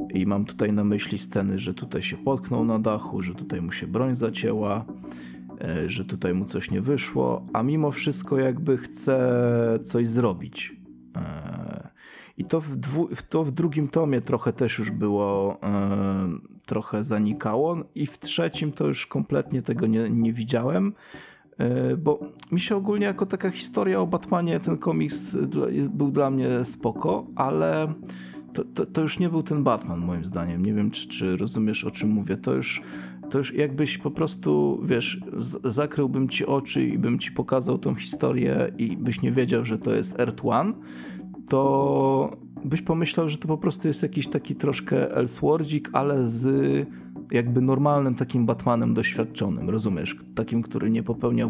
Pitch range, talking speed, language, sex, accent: 95-145 Hz, 160 wpm, Polish, male, native